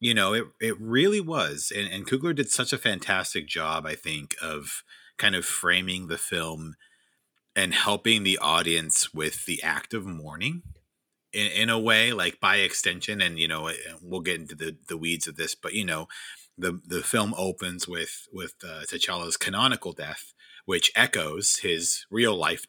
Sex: male